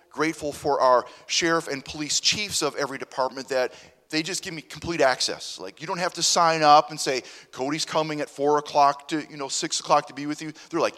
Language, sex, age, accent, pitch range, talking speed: English, male, 30-49, American, 125-170 Hz, 230 wpm